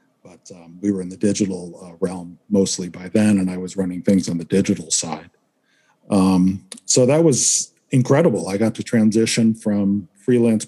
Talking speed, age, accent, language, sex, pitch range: 180 wpm, 40-59, American, English, male, 100-120 Hz